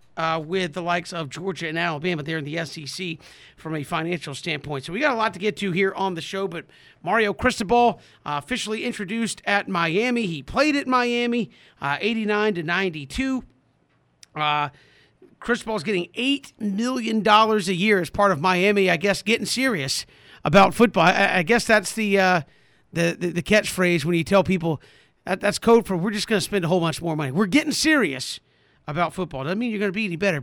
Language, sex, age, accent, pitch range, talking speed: English, male, 40-59, American, 170-220 Hz, 195 wpm